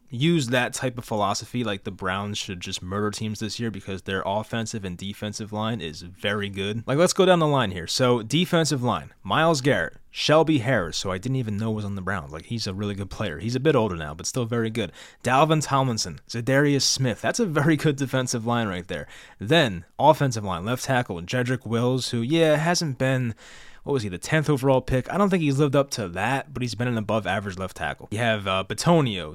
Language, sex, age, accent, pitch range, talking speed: English, male, 20-39, American, 100-130 Hz, 225 wpm